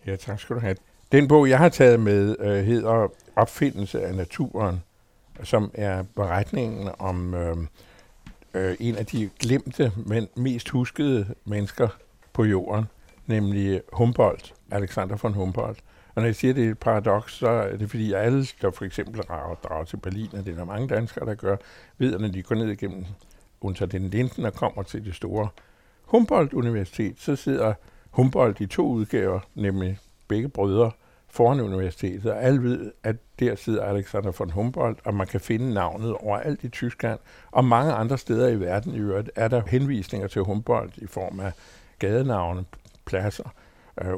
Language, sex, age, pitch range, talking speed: Danish, male, 60-79, 100-125 Hz, 175 wpm